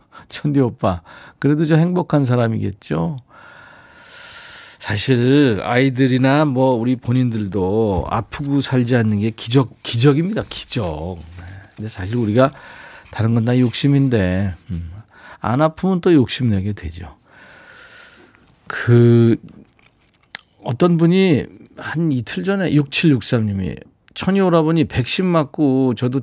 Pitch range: 100-145 Hz